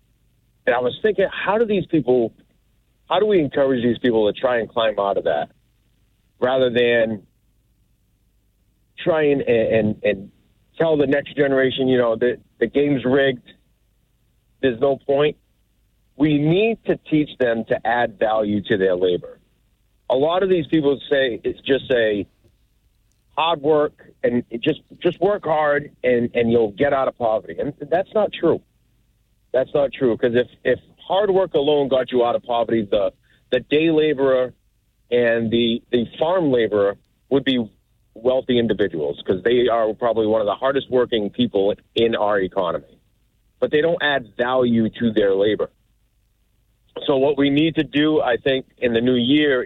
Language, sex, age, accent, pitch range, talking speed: English, male, 50-69, American, 110-145 Hz, 170 wpm